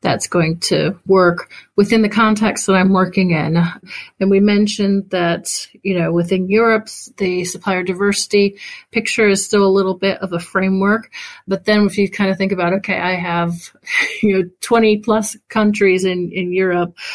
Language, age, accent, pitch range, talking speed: English, 30-49, American, 180-210 Hz, 175 wpm